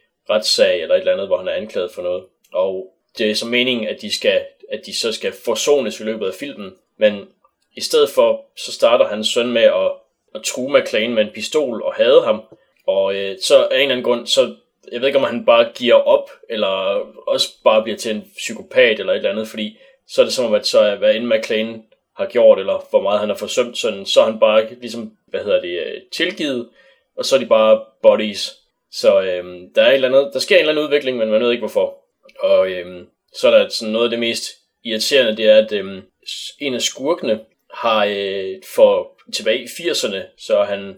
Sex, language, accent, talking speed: male, Danish, native, 225 wpm